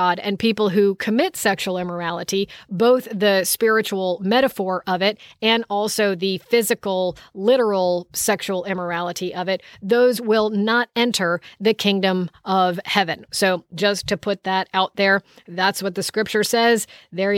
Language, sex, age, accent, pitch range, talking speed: English, female, 50-69, American, 190-230 Hz, 145 wpm